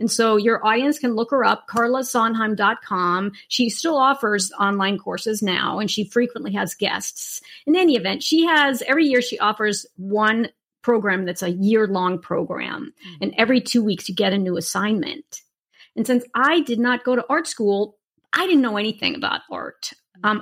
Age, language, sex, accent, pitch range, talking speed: 40-59, English, female, American, 215-290 Hz, 175 wpm